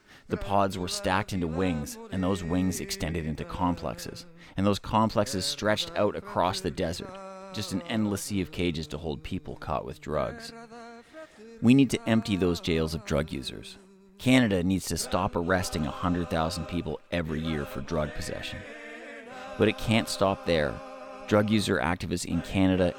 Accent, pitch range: American, 85-110 Hz